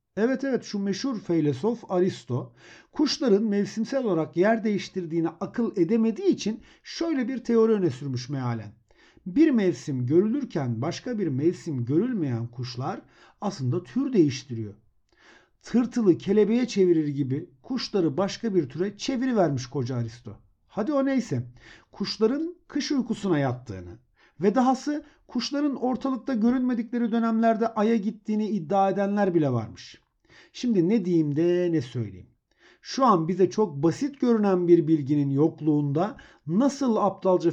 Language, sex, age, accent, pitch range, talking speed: Turkish, male, 50-69, native, 145-230 Hz, 125 wpm